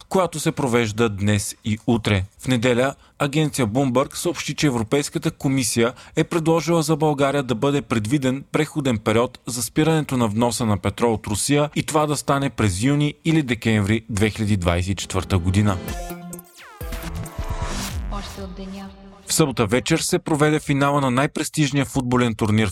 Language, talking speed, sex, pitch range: Bulgarian, 135 wpm, male, 110-145 Hz